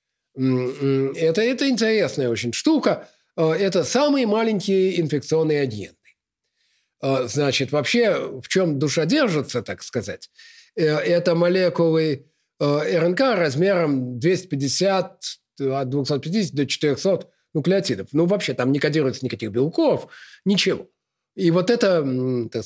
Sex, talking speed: male, 105 wpm